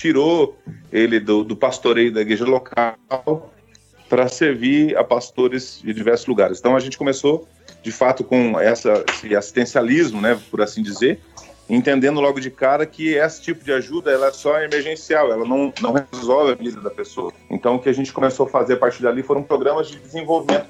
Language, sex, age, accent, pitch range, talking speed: Portuguese, male, 40-59, Brazilian, 120-150 Hz, 190 wpm